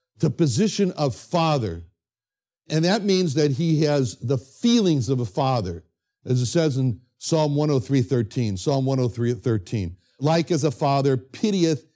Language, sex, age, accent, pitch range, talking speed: English, male, 60-79, American, 125-170 Hz, 150 wpm